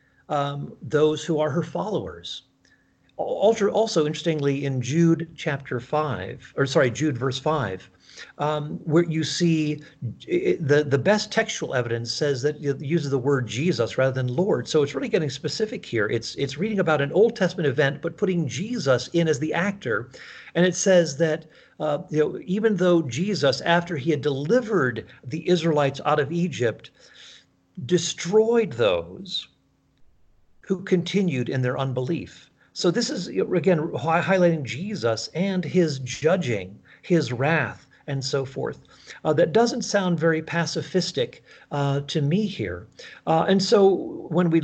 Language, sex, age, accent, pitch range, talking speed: English, male, 50-69, American, 140-175 Hz, 150 wpm